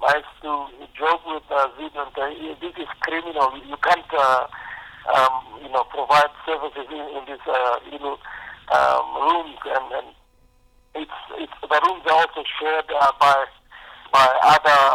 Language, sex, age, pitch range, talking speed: English, male, 50-69, 135-155 Hz, 160 wpm